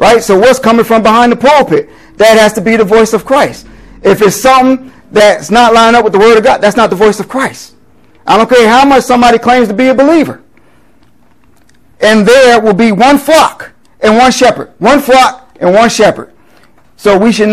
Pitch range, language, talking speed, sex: 170-235 Hz, English, 210 wpm, male